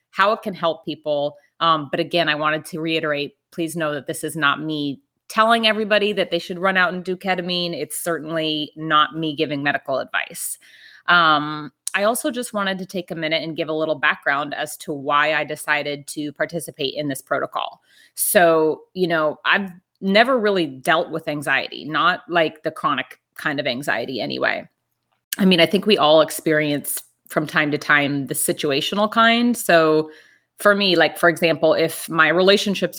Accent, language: American, English